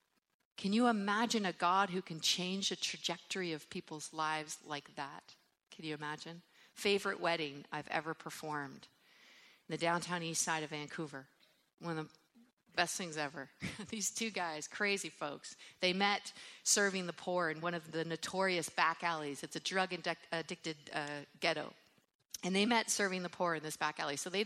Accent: American